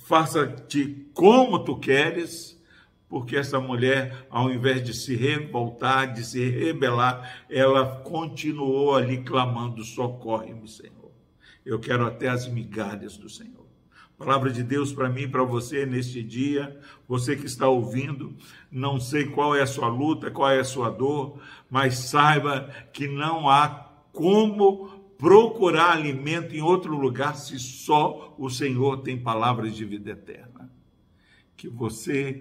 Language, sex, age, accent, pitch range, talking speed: Portuguese, male, 60-79, Brazilian, 120-145 Hz, 140 wpm